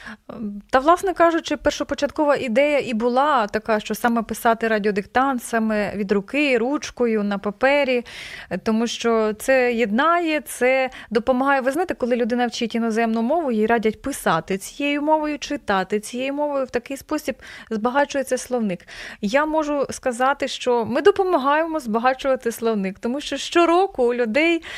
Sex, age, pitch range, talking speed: female, 20-39, 230-290 Hz, 140 wpm